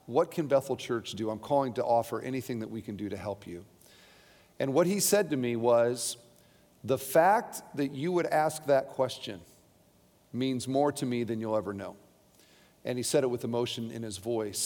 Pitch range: 125-155 Hz